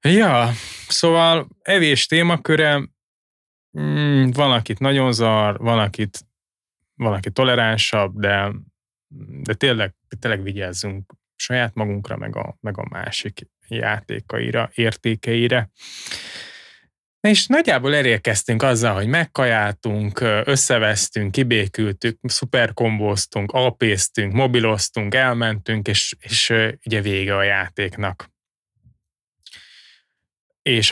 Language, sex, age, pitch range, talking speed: Hungarian, male, 20-39, 105-125 Hz, 90 wpm